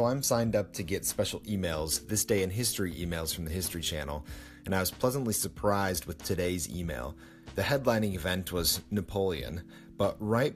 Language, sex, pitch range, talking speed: English, male, 85-105 Hz, 175 wpm